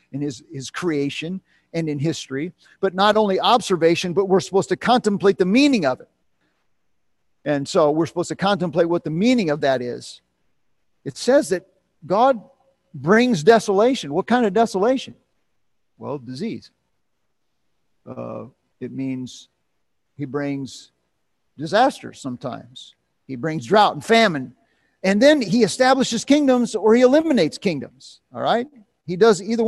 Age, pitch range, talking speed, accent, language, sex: 50-69, 140-230 Hz, 140 wpm, American, English, male